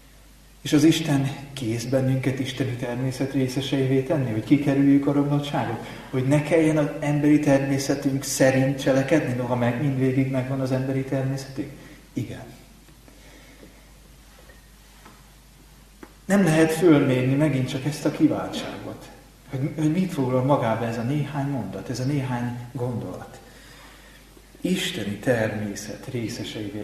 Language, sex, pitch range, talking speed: Hungarian, male, 120-150 Hz, 120 wpm